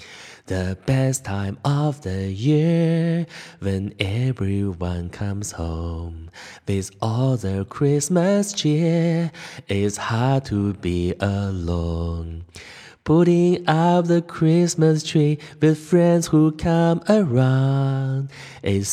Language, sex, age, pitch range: Chinese, male, 20-39, 115-165 Hz